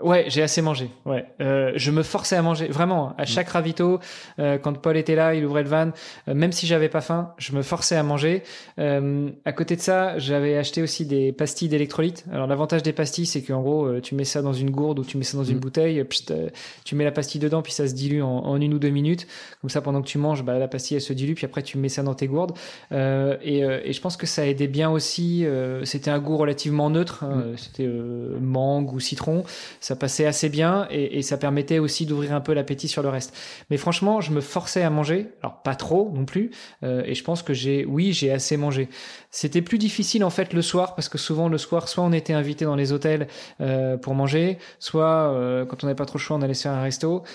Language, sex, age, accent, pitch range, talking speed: French, male, 20-39, French, 135-160 Hz, 255 wpm